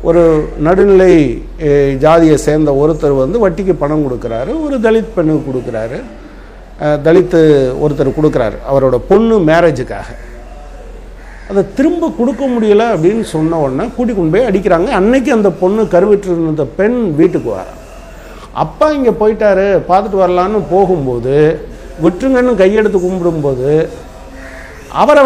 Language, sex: Tamil, male